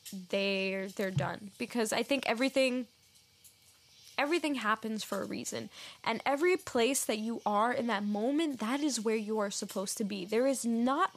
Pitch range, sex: 205-275 Hz, female